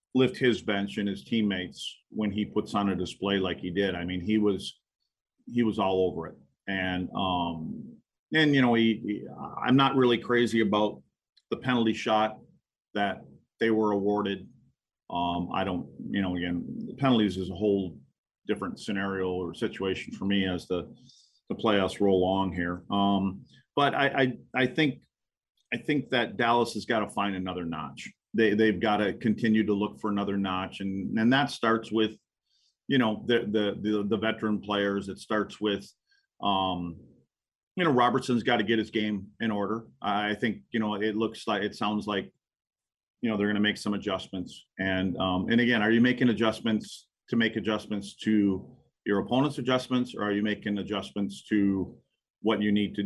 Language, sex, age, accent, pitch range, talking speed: English, male, 40-59, American, 95-115 Hz, 185 wpm